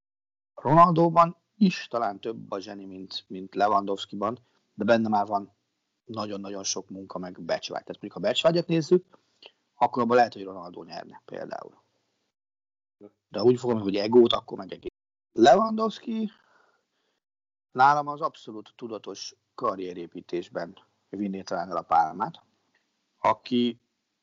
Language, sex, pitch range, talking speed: Hungarian, male, 100-150 Hz, 125 wpm